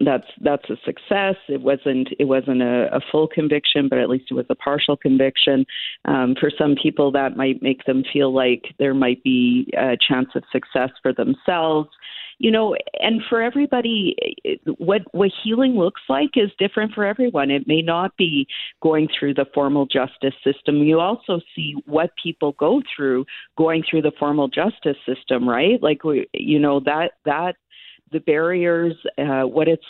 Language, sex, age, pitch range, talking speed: English, female, 40-59, 135-170 Hz, 175 wpm